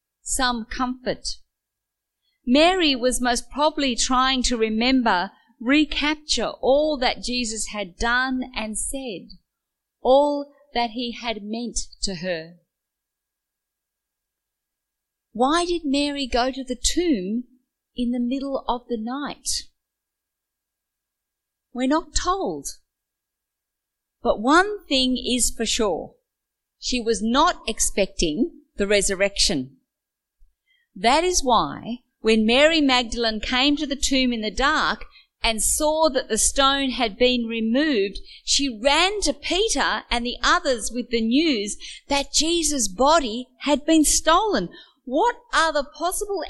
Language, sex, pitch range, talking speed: English, female, 230-295 Hz, 120 wpm